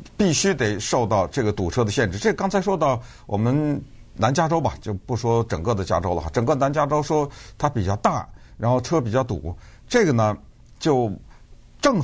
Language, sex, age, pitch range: Chinese, male, 50-69, 100-140 Hz